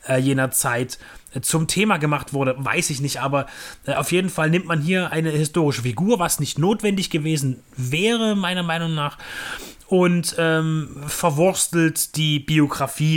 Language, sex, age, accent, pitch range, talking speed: German, male, 30-49, German, 140-175 Hz, 145 wpm